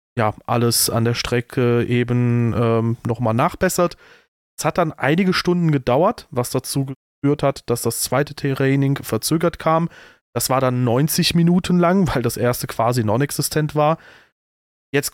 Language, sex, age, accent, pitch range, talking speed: German, male, 30-49, German, 125-155 Hz, 150 wpm